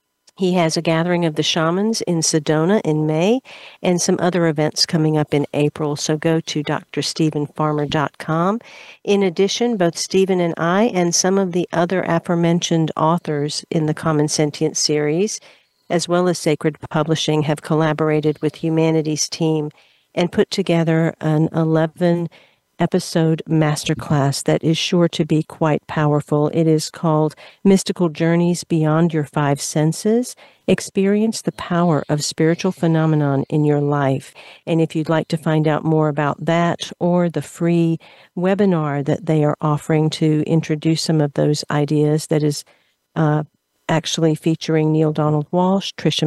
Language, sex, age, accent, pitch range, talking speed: English, female, 50-69, American, 155-175 Hz, 150 wpm